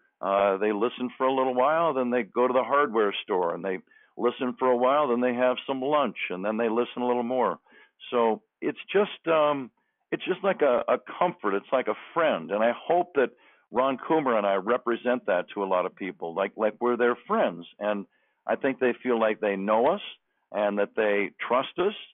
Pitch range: 110-130 Hz